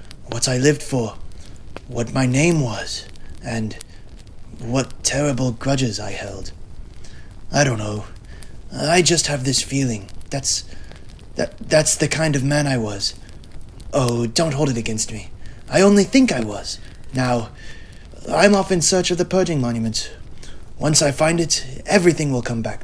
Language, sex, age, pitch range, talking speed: English, male, 20-39, 105-145 Hz, 155 wpm